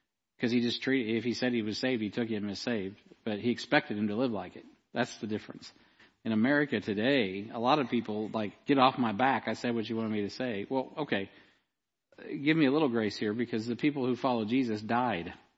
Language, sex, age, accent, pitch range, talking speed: English, male, 50-69, American, 110-125 Hz, 235 wpm